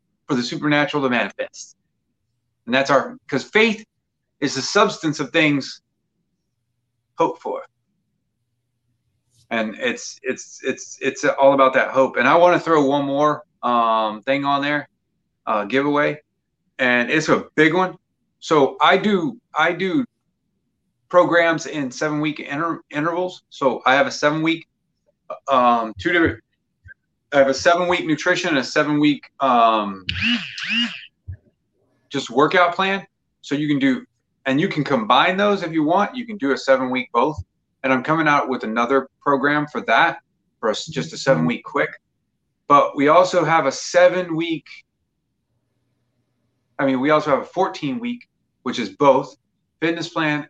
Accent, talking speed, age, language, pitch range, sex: American, 150 wpm, 30-49, English, 125-175 Hz, male